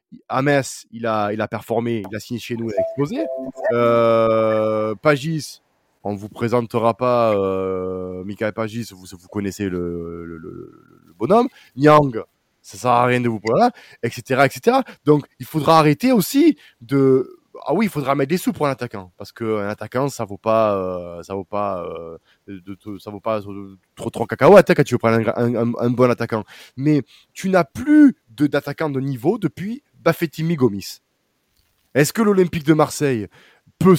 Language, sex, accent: French, male, French